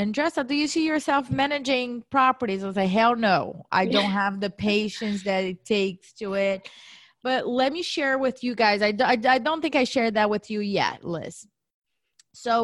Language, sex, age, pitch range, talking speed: English, female, 20-39, 190-245 Hz, 205 wpm